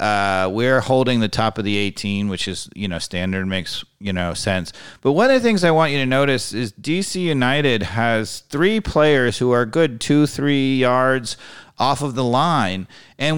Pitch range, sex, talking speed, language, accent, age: 120-165 Hz, male, 195 wpm, English, American, 40-59